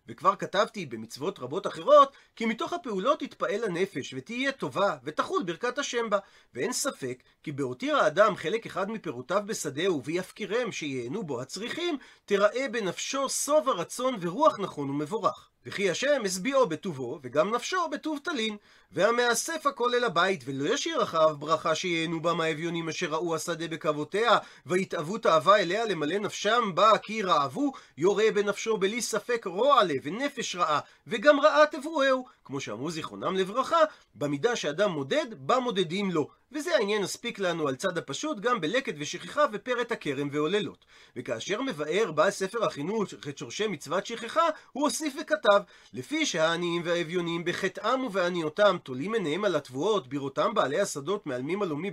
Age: 40-59